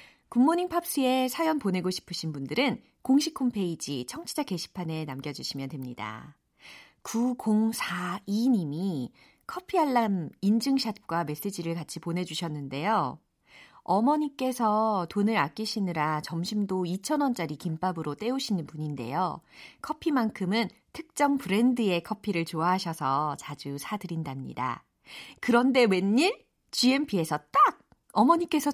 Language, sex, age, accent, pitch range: Korean, female, 40-59, native, 170-265 Hz